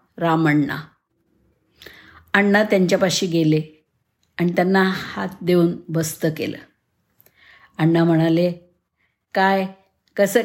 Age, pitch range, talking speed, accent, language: 50-69, 165-210 Hz, 80 wpm, native, Marathi